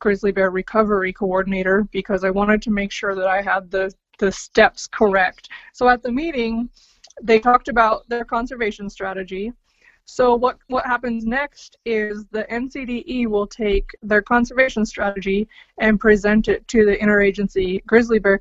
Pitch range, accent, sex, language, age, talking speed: 200-235 Hz, American, female, English, 20-39, 155 wpm